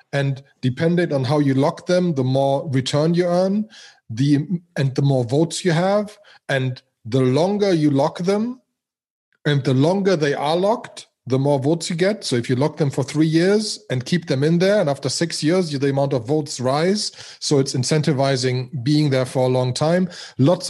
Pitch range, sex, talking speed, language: 130-165 Hz, male, 195 wpm, English